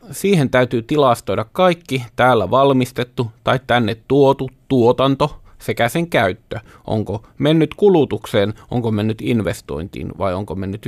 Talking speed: 120 wpm